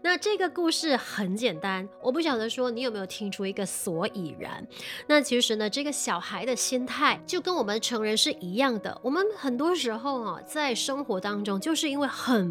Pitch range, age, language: 220-280 Hz, 20-39, Chinese